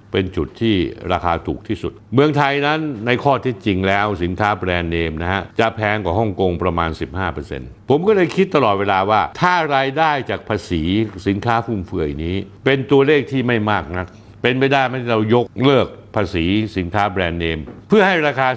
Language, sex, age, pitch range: Thai, male, 60-79, 100-145 Hz